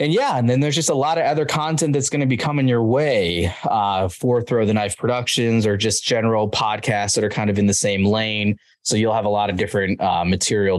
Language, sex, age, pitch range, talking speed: English, male, 20-39, 100-125 Hz, 250 wpm